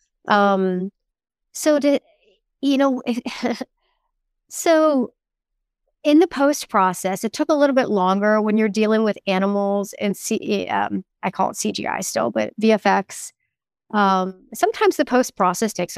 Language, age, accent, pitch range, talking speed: English, 40-59, American, 195-260 Hz, 130 wpm